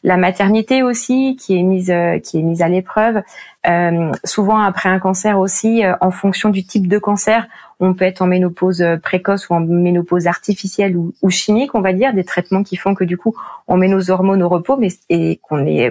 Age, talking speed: 30-49, 220 wpm